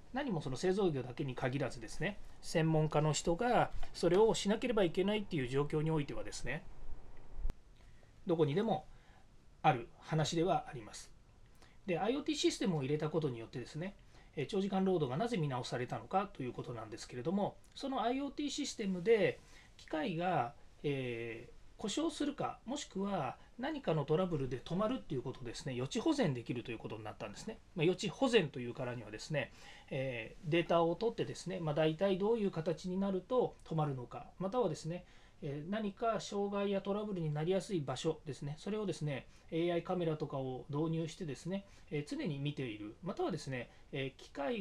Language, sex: Japanese, male